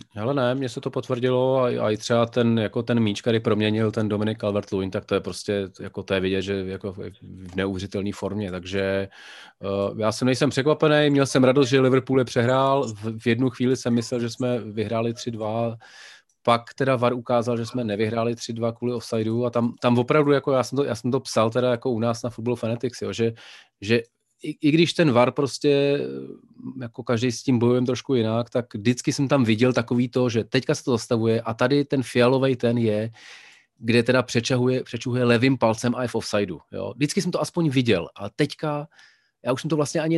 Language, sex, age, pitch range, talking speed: Czech, male, 30-49, 110-130 Hz, 210 wpm